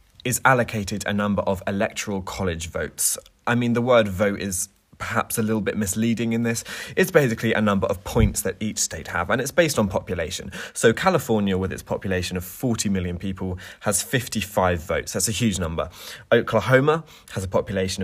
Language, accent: English, British